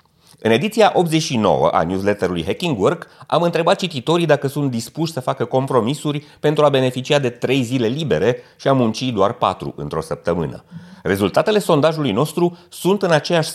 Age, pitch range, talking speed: 30-49, 115-170 Hz, 160 wpm